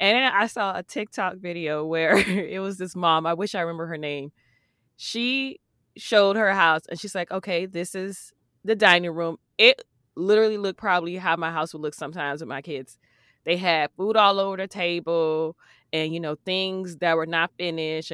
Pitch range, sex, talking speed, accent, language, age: 160-190 Hz, female, 195 wpm, American, English, 20-39